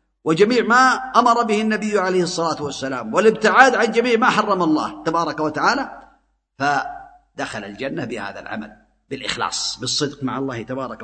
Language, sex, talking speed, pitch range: Arabic, male, 135 wpm, 145-185 Hz